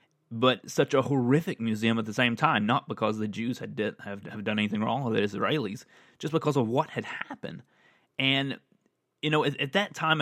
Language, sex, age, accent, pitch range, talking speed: English, male, 30-49, American, 110-135 Hz, 205 wpm